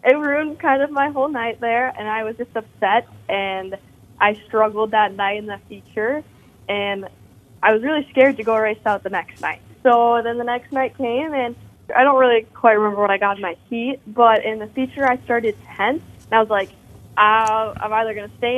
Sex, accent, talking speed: female, American, 215 wpm